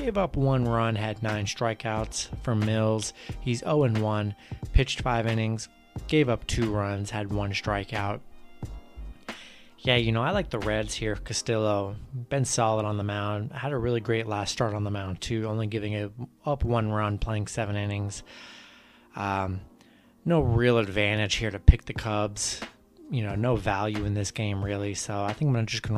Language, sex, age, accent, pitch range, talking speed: English, male, 30-49, American, 105-120 Hz, 180 wpm